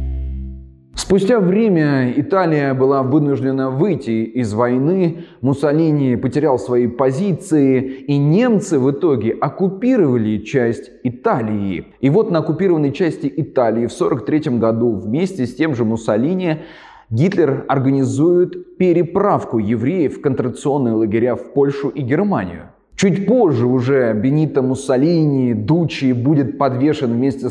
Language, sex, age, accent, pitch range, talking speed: Russian, male, 20-39, native, 120-155 Hz, 115 wpm